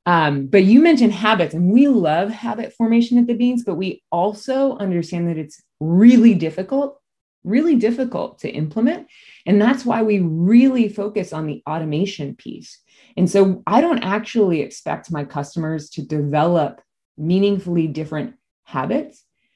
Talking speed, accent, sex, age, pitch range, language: 145 wpm, American, female, 30-49, 150-220 Hz, English